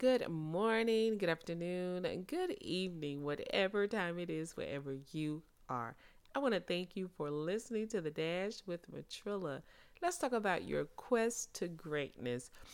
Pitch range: 165-225 Hz